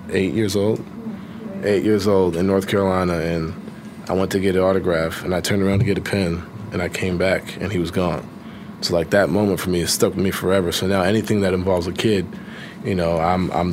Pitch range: 90-105 Hz